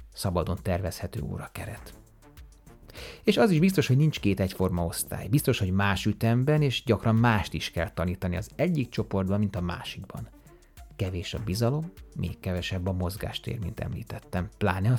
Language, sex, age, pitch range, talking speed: Hungarian, male, 30-49, 90-115 Hz, 155 wpm